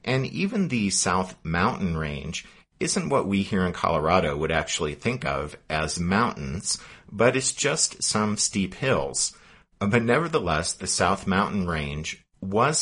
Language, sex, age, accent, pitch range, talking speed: English, male, 50-69, American, 80-110 Hz, 145 wpm